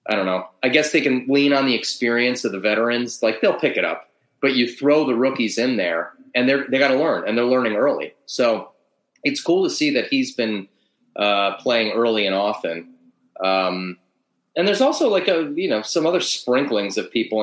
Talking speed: 215 wpm